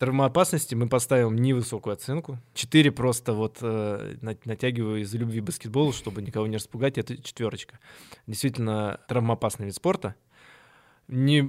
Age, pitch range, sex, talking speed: 20-39, 110-130 Hz, male, 130 wpm